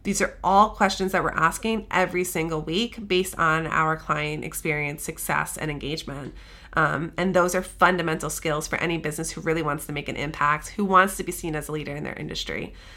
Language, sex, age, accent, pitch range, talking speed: English, female, 30-49, American, 165-205 Hz, 210 wpm